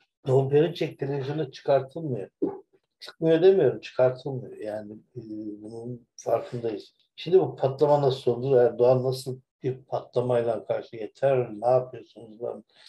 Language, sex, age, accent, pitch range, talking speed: Turkish, male, 60-79, native, 115-135 Hz, 105 wpm